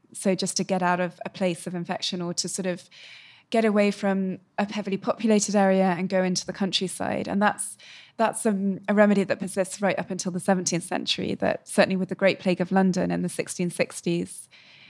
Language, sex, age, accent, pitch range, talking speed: English, female, 20-39, British, 190-225 Hz, 205 wpm